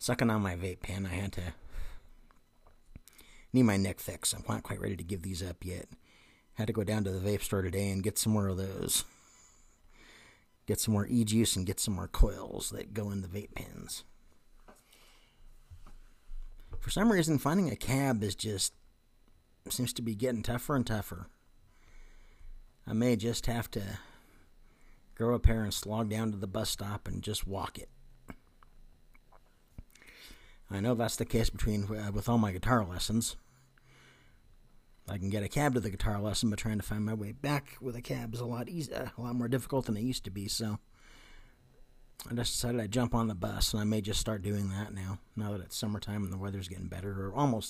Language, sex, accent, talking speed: English, male, American, 200 wpm